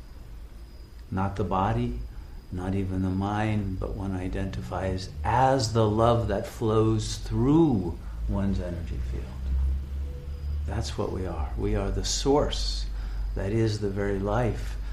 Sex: male